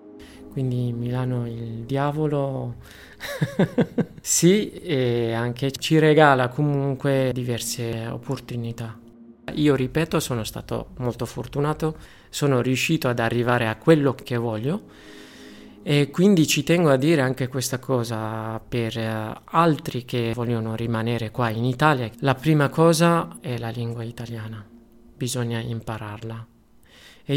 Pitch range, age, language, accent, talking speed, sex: 120-145 Hz, 30-49, Italian, native, 115 wpm, male